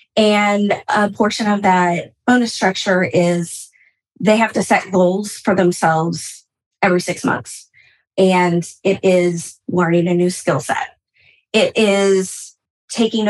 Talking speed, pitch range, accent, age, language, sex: 130 wpm, 180-225 Hz, American, 20-39, English, female